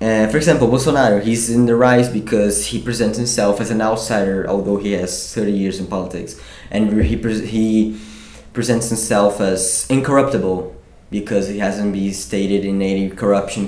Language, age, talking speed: English, 20-39, 160 wpm